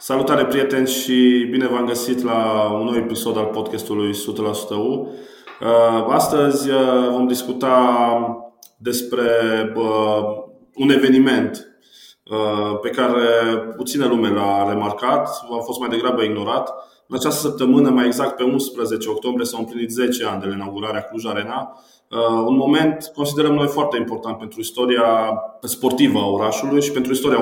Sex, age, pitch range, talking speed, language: male, 20-39, 110-125 Hz, 135 wpm, Romanian